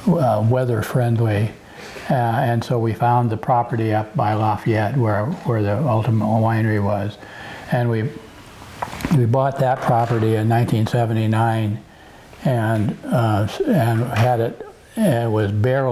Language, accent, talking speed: English, American, 130 wpm